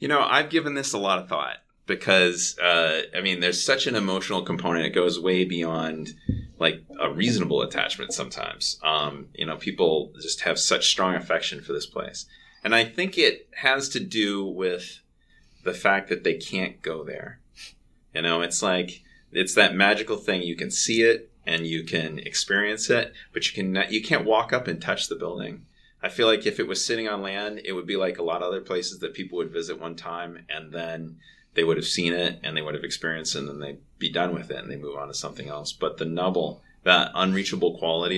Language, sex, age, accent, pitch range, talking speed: English, male, 30-49, American, 85-105 Hz, 215 wpm